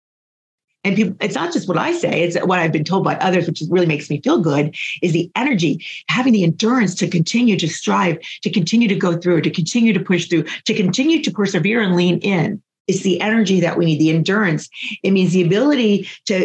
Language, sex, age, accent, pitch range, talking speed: English, female, 40-59, American, 175-230 Hz, 220 wpm